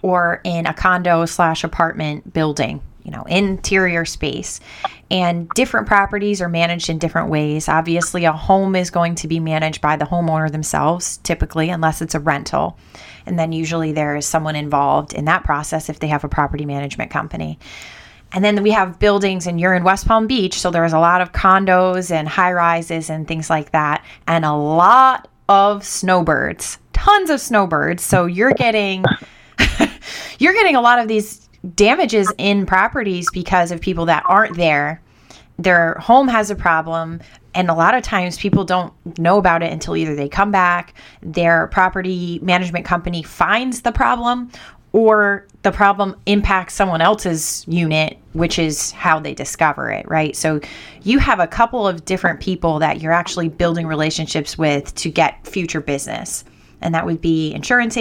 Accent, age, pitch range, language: American, 20-39, 160-195 Hz, English